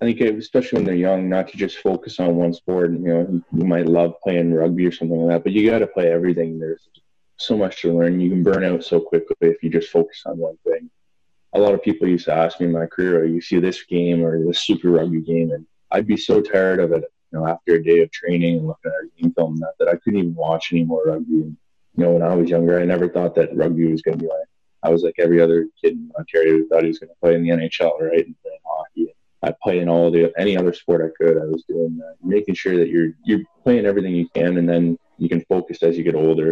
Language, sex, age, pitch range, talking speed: English, male, 20-39, 85-90 Hz, 280 wpm